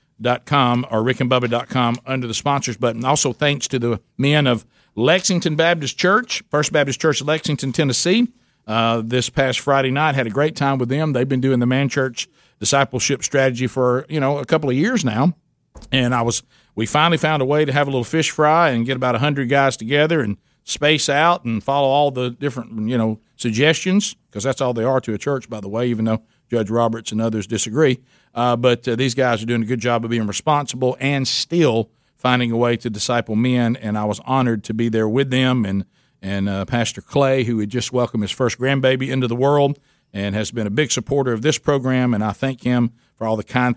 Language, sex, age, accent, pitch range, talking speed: English, male, 50-69, American, 115-140 Hz, 220 wpm